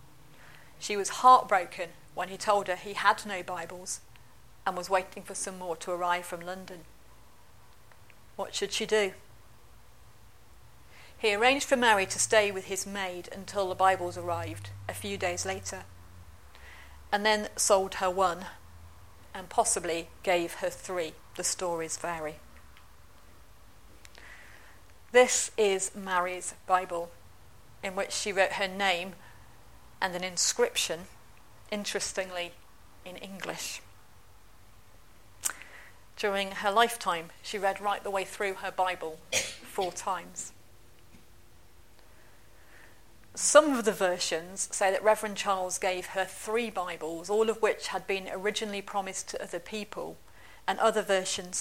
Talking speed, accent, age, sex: 125 wpm, British, 40-59, female